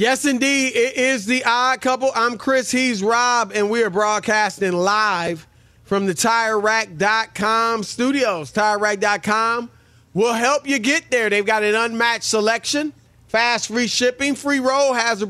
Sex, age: male, 30-49